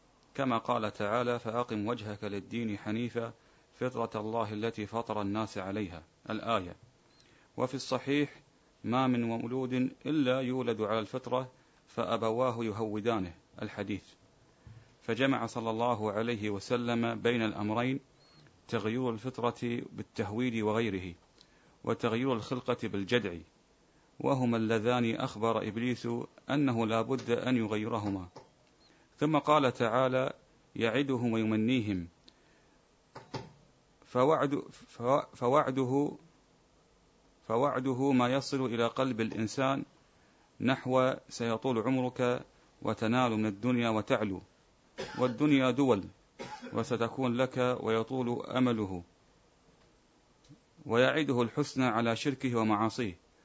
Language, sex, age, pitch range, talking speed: Arabic, male, 40-59, 110-130 Hz, 90 wpm